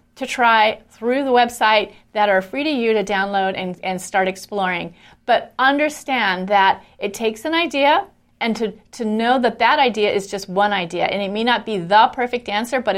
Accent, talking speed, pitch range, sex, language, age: American, 200 wpm, 195-240 Hz, female, English, 40-59